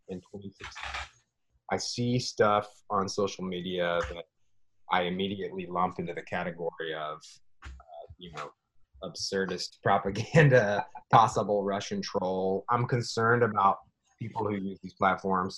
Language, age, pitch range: English, 30-49, 95-135 Hz